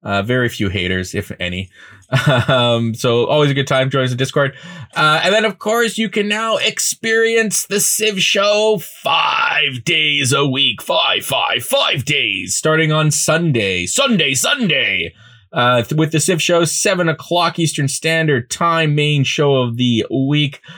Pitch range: 120-180 Hz